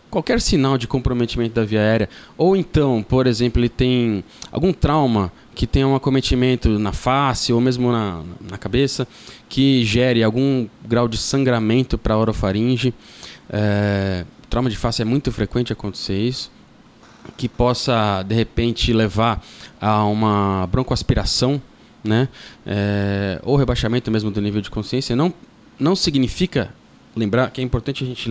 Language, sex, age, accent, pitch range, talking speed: Portuguese, male, 20-39, Brazilian, 110-135 Hz, 145 wpm